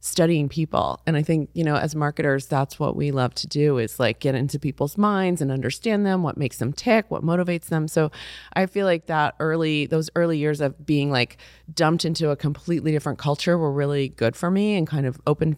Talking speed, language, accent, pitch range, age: 225 wpm, English, American, 140-165 Hz, 30-49